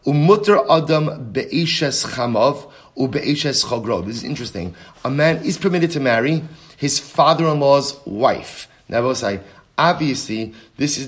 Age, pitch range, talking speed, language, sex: 40-59, 120-150 Hz, 95 wpm, English, male